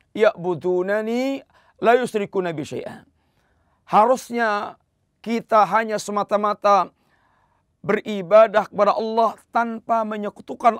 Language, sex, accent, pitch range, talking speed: Indonesian, male, native, 195-235 Hz, 65 wpm